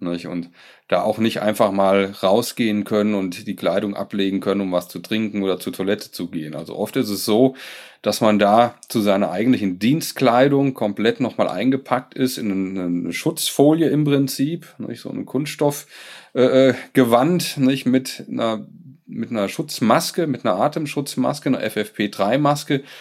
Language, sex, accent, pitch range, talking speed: German, male, German, 105-140 Hz, 155 wpm